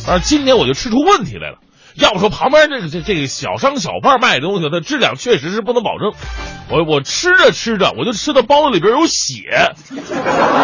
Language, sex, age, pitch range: Chinese, male, 30-49, 150-245 Hz